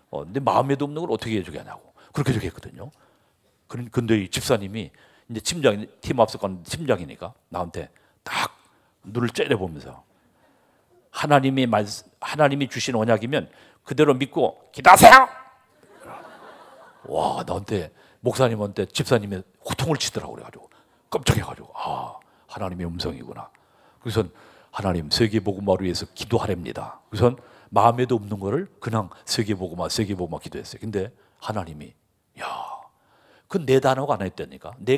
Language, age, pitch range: Korean, 40-59, 100-135 Hz